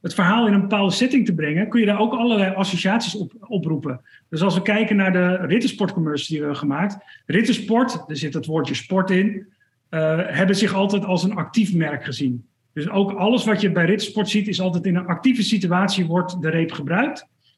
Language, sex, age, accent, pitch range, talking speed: Dutch, male, 40-59, Dutch, 165-205 Hz, 210 wpm